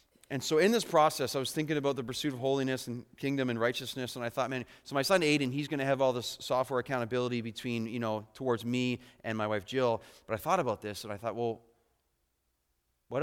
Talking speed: 235 wpm